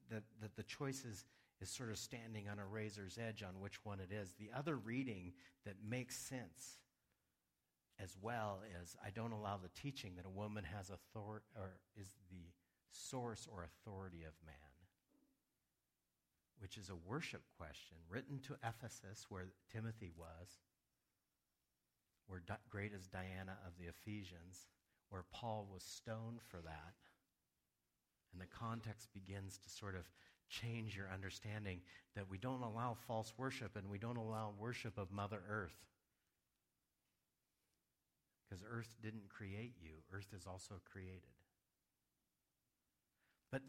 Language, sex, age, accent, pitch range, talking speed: English, male, 50-69, American, 90-115 Hz, 145 wpm